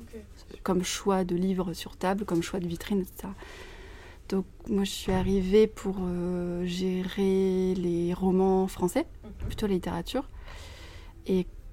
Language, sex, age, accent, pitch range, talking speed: French, female, 20-39, French, 180-200 Hz, 135 wpm